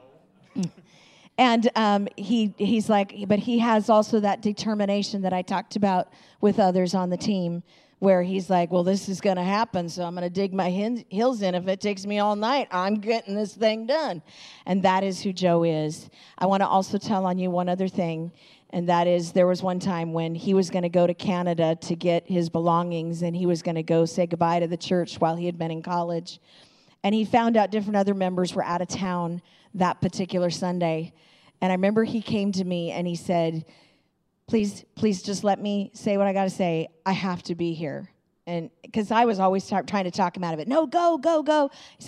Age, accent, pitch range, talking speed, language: 50-69, American, 170-200 Hz, 225 wpm, English